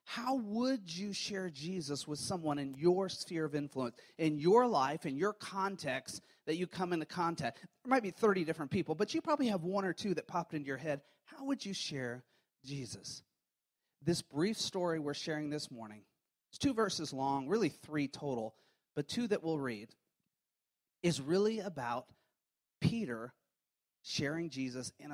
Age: 30-49